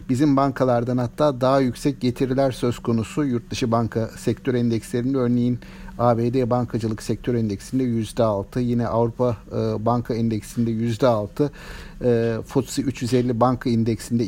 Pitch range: 115-140 Hz